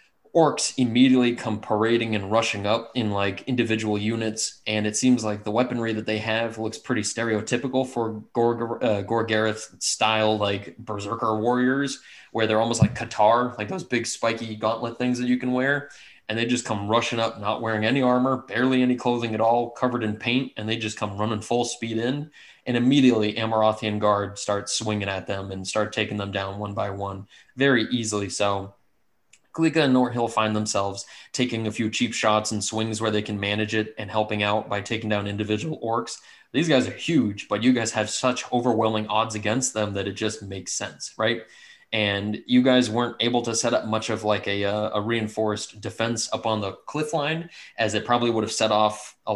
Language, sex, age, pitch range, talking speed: English, male, 20-39, 105-120 Hz, 200 wpm